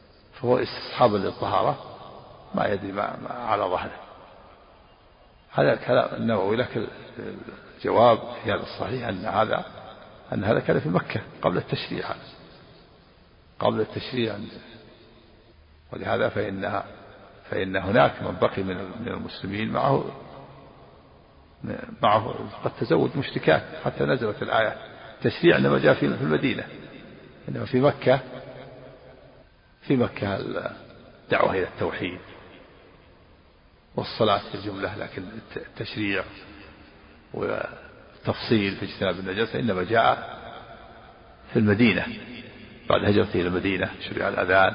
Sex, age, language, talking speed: male, 60-79, Arabic, 105 wpm